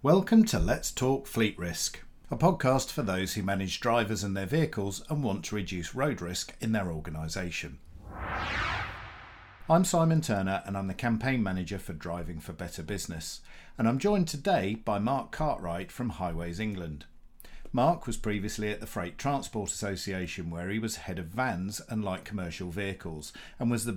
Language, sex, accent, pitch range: English, male, British, 85-115 Hz